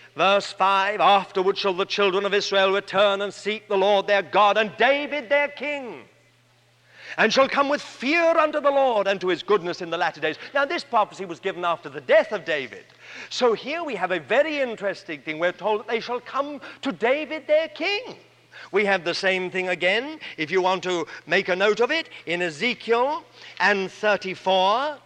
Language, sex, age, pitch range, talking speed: English, male, 50-69, 180-220 Hz, 195 wpm